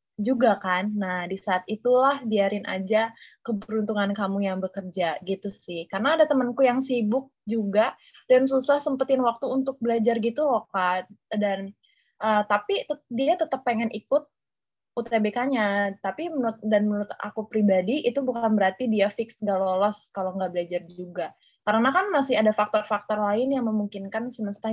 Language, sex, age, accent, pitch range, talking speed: Indonesian, female, 20-39, native, 195-255 Hz, 155 wpm